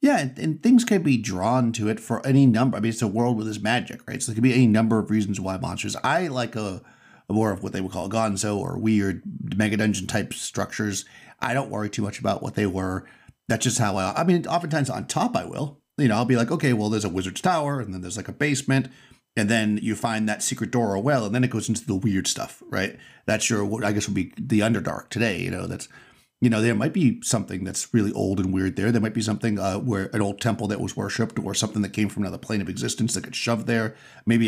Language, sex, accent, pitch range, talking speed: English, male, American, 105-125 Hz, 270 wpm